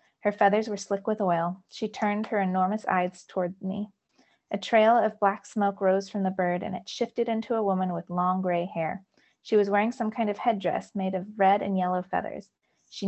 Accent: American